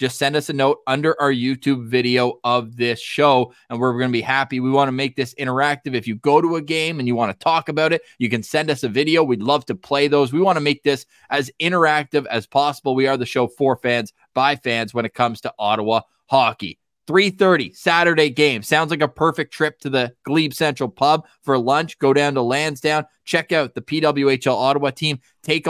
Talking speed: 225 wpm